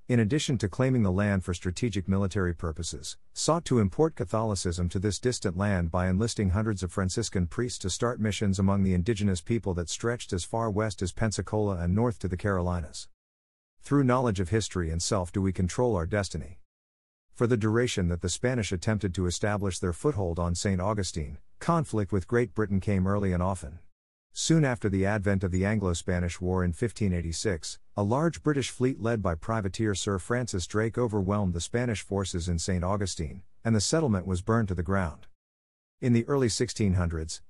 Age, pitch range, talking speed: 50-69, 90-115 Hz, 185 wpm